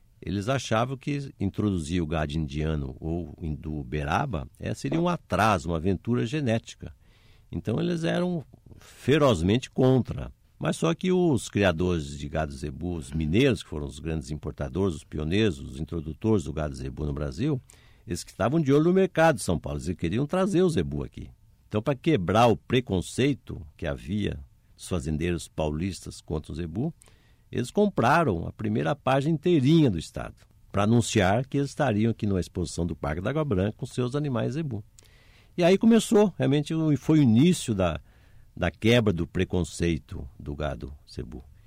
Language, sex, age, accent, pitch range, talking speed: Portuguese, male, 60-79, Brazilian, 85-130 Hz, 165 wpm